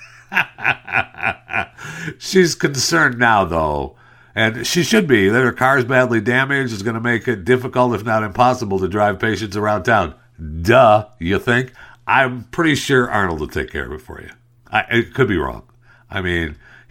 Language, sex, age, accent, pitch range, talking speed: English, male, 60-79, American, 105-140 Hz, 165 wpm